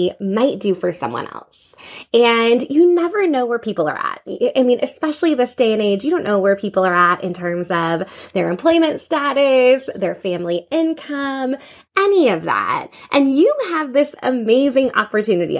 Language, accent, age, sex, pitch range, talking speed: English, American, 20-39, female, 215-320 Hz, 175 wpm